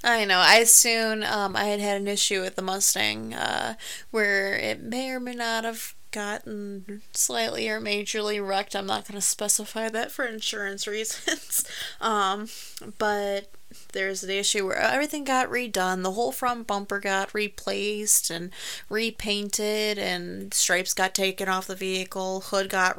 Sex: female